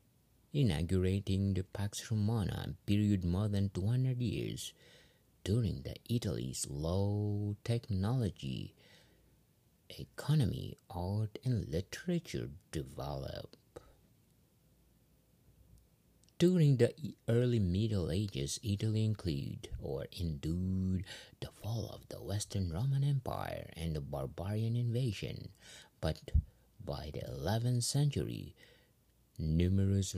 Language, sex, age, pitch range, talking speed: English, male, 50-69, 95-125 Hz, 90 wpm